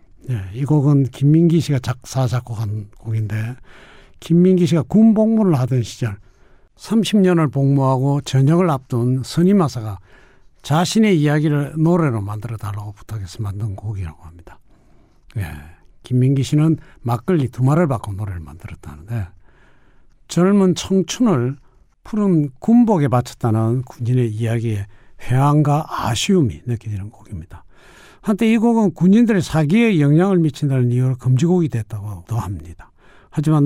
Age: 60-79